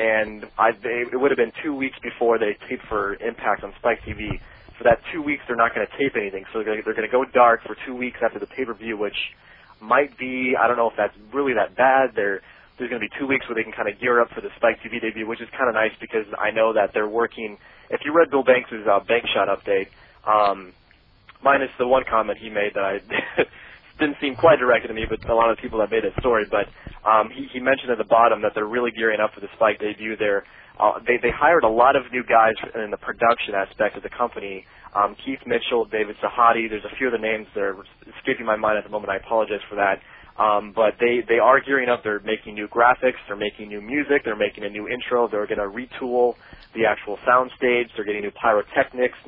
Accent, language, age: American, English, 30-49